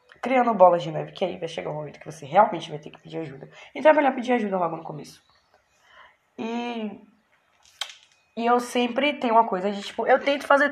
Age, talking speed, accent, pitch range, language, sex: 10-29, 220 wpm, Brazilian, 170-255 Hz, Portuguese, female